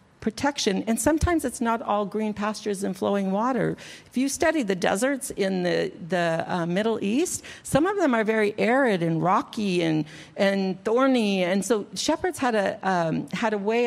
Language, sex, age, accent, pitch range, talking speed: English, female, 50-69, American, 175-225 Hz, 180 wpm